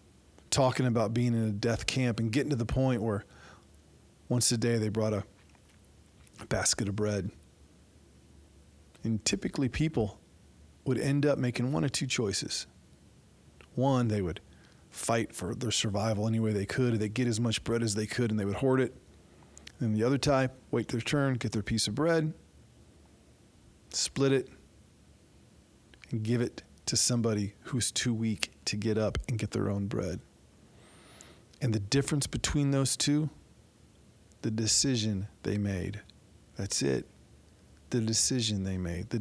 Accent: American